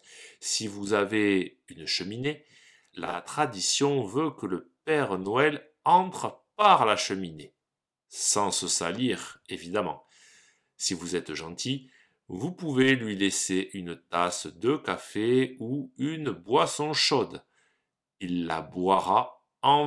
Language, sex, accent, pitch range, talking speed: French, male, French, 90-145 Hz, 120 wpm